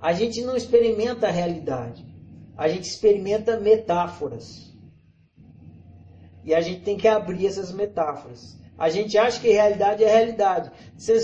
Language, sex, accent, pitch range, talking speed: Portuguese, male, Brazilian, 175-250 Hz, 140 wpm